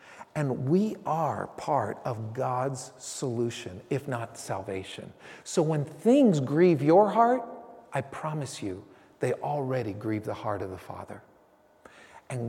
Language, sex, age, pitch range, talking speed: English, male, 50-69, 115-145 Hz, 135 wpm